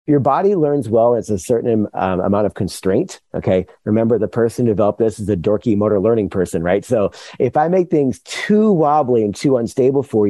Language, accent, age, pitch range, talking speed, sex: English, American, 40-59, 110-145 Hz, 210 wpm, male